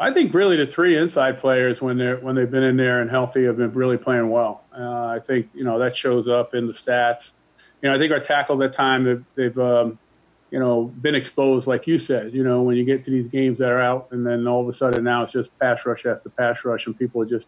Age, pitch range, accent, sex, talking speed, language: 40-59, 120-130 Hz, American, male, 270 wpm, English